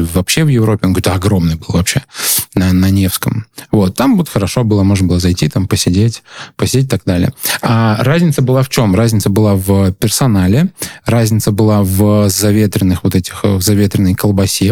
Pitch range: 95-120 Hz